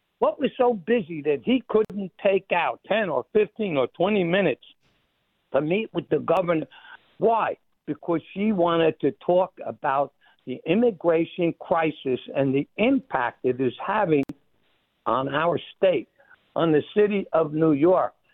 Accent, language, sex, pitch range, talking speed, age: American, English, male, 160-235 Hz, 145 wpm, 60-79